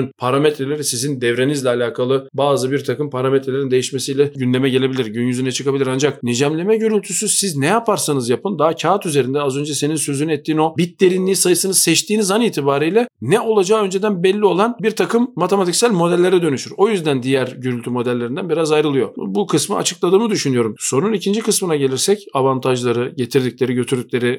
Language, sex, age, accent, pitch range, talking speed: Turkish, male, 40-59, native, 135-195 Hz, 155 wpm